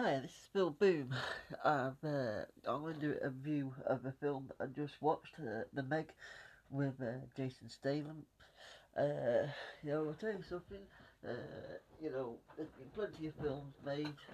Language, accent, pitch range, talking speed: English, British, 125-150 Hz, 180 wpm